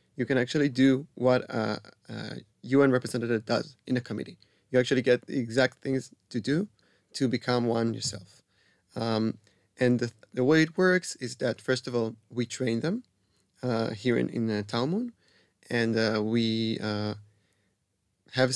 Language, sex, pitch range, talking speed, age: Hebrew, male, 115-130 Hz, 165 wpm, 30-49